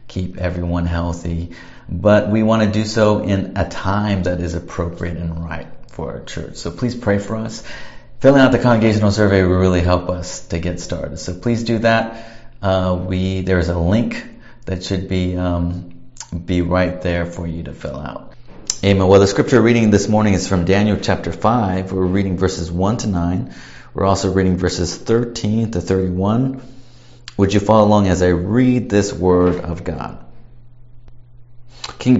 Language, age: English, 40-59